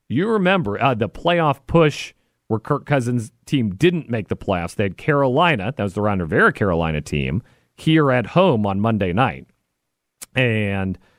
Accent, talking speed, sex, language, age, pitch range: American, 160 wpm, male, English, 40-59, 95-150 Hz